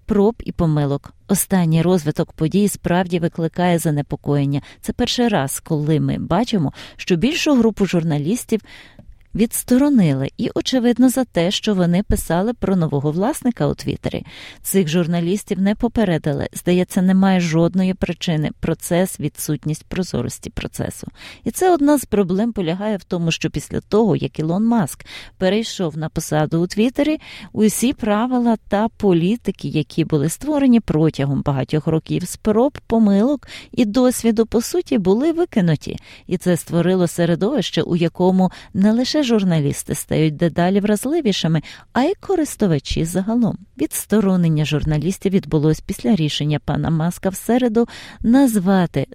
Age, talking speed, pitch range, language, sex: 30-49, 135 wpm, 160-225 Hz, Ukrainian, female